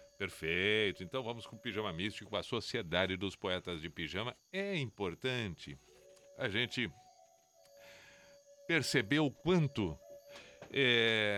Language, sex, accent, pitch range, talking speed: Portuguese, male, Brazilian, 95-155 Hz, 110 wpm